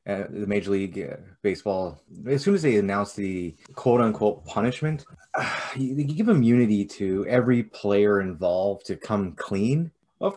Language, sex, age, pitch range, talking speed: English, male, 20-39, 100-130 Hz, 150 wpm